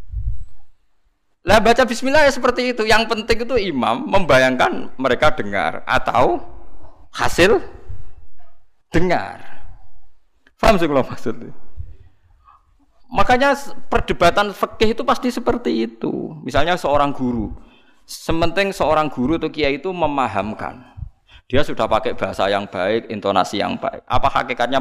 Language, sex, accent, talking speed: Indonesian, male, native, 110 wpm